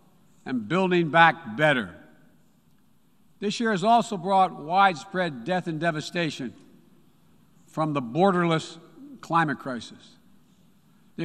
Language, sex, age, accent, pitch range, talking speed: English, male, 60-79, American, 160-205 Hz, 100 wpm